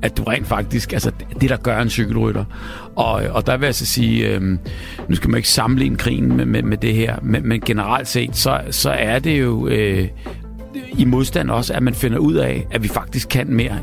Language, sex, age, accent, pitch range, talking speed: Danish, male, 60-79, native, 105-125 Hz, 230 wpm